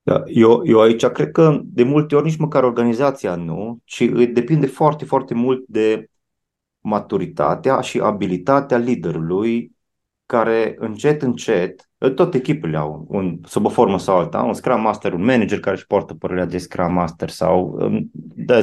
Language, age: Romanian, 30-49